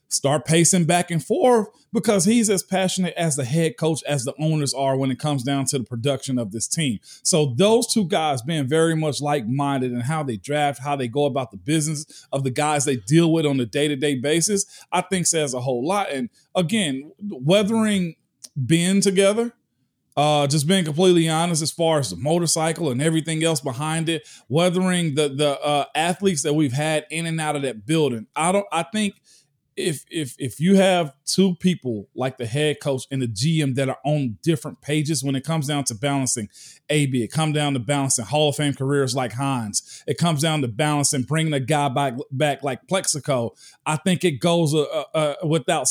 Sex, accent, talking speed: male, American, 205 wpm